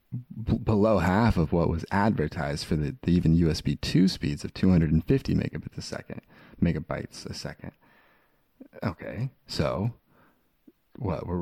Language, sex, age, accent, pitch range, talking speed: English, male, 30-49, American, 80-100 Hz, 135 wpm